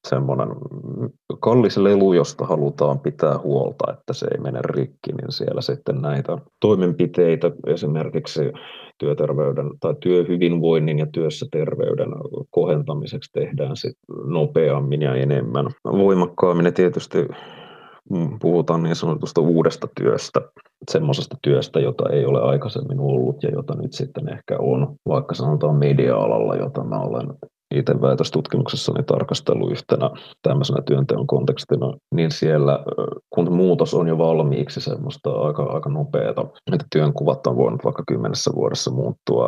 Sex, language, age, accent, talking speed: male, Finnish, 30-49, native, 125 wpm